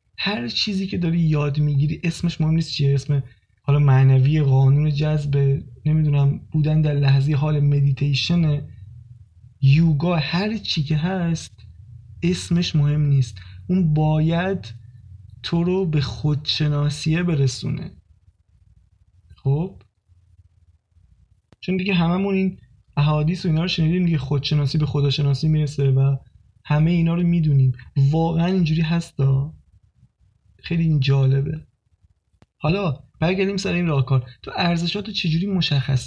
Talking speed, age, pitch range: 120 wpm, 20-39, 135-170 Hz